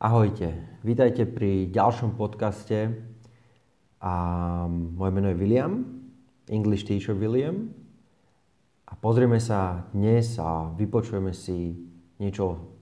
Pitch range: 95-125 Hz